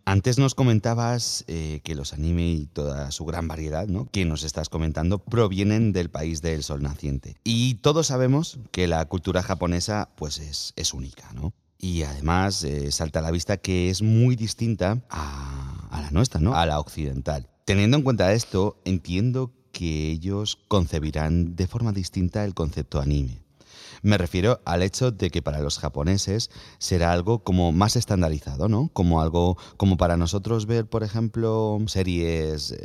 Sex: male